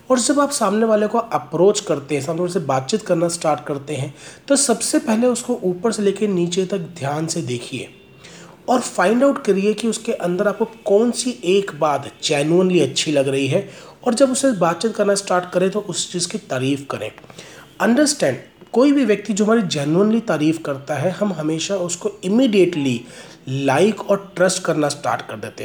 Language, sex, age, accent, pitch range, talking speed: Hindi, male, 40-59, native, 160-220 Hz, 185 wpm